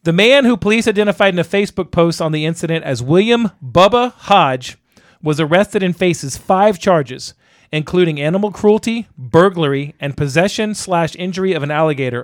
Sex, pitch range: male, 150-195 Hz